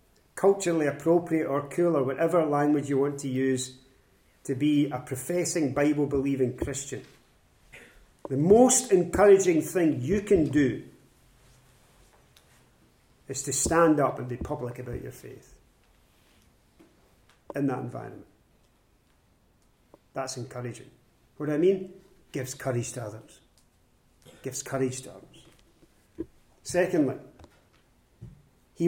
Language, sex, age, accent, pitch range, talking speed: English, male, 40-59, British, 130-180 Hz, 110 wpm